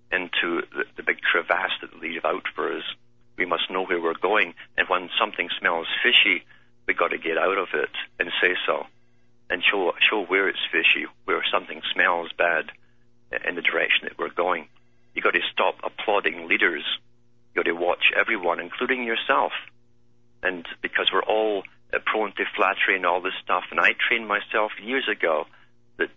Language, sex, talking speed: English, male, 170 wpm